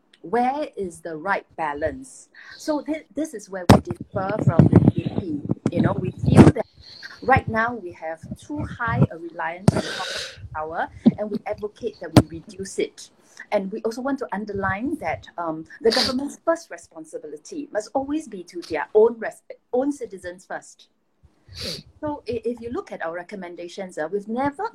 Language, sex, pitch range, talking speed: English, female, 180-265 Hz, 160 wpm